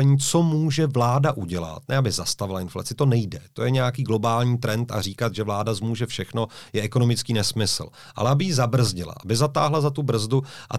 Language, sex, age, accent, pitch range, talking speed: Czech, male, 40-59, native, 115-140 Hz, 190 wpm